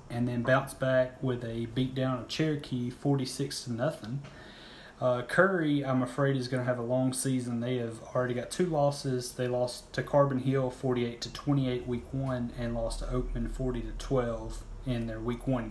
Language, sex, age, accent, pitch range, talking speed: English, male, 30-49, American, 120-140 Hz, 185 wpm